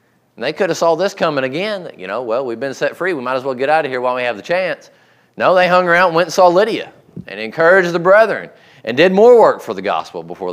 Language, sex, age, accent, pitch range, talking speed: English, male, 30-49, American, 130-180 Hz, 280 wpm